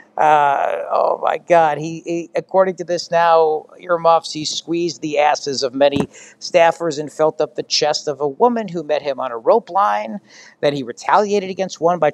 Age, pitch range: 50-69, 150-185 Hz